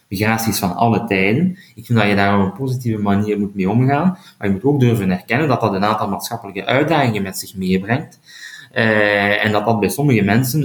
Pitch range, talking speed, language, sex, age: 105-140 Hz, 215 wpm, Dutch, male, 30-49